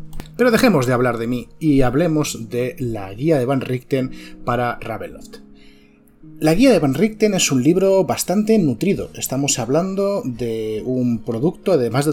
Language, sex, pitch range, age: Spanish, male, 120-155 Hz, 30-49